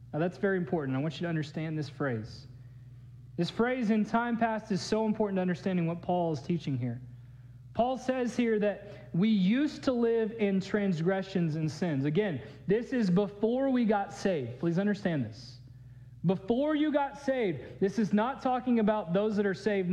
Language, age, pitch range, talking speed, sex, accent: English, 40-59, 160-240 Hz, 185 wpm, male, American